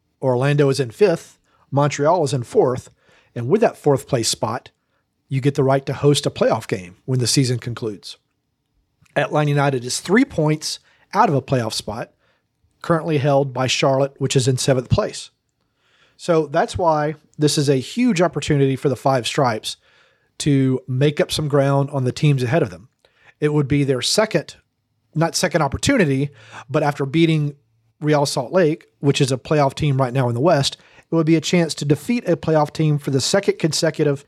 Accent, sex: American, male